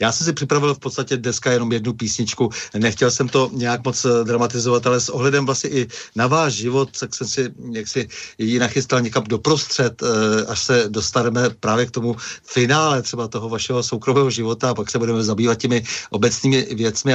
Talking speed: 185 wpm